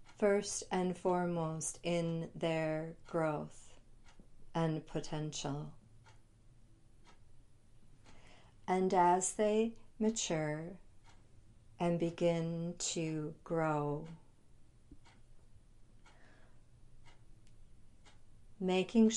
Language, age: English, 50-69